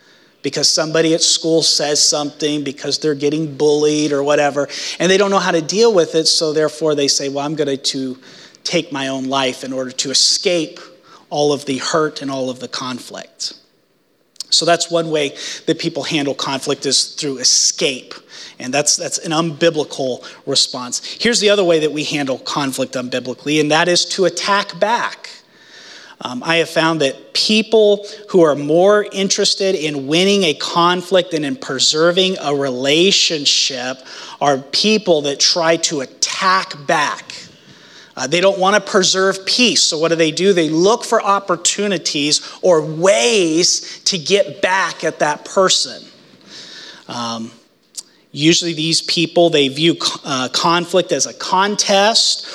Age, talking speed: 30-49, 160 wpm